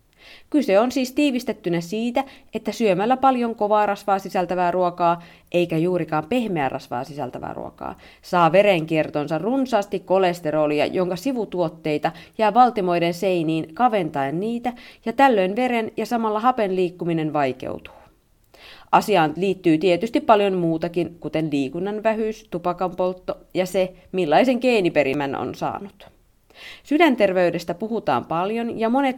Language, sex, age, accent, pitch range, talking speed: Finnish, female, 30-49, native, 170-225 Hz, 120 wpm